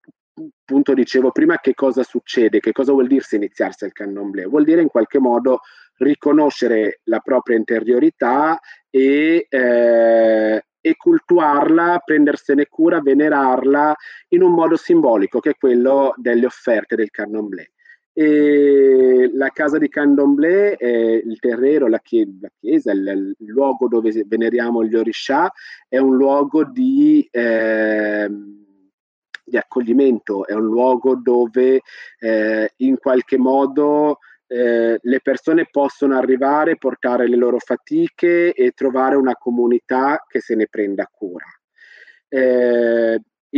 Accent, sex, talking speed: native, male, 130 wpm